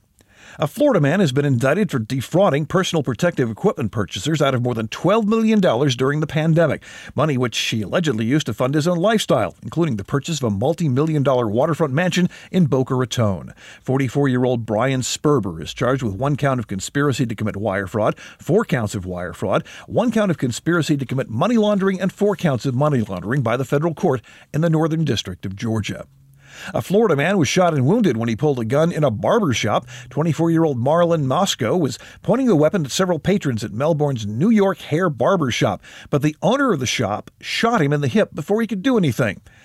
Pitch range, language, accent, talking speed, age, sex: 115-160 Hz, English, American, 205 wpm, 50-69, male